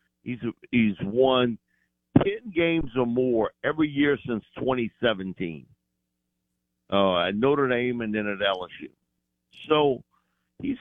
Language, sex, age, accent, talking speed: English, male, 50-69, American, 115 wpm